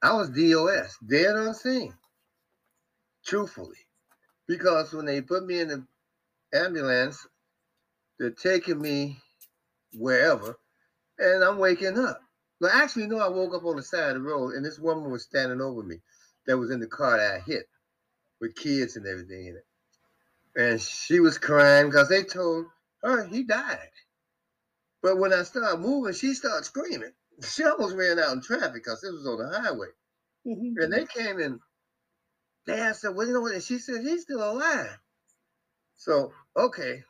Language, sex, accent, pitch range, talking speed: English, male, American, 150-230 Hz, 170 wpm